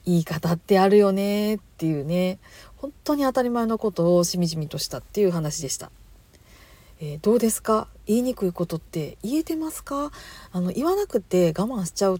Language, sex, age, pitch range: Japanese, female, 40-59, 170-230 Hz